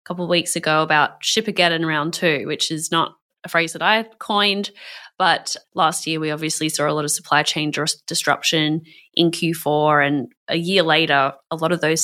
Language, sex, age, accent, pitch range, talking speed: English, female, 20-39, Australian, 155-170 Hz, 195 wpm